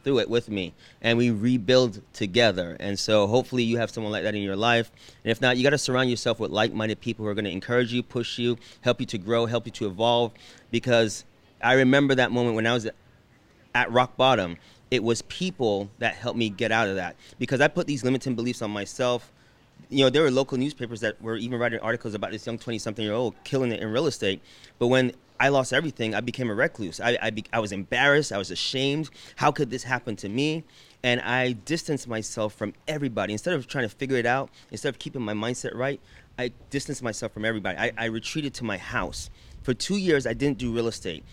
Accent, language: American, English